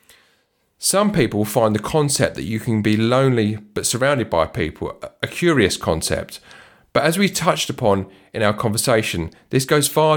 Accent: British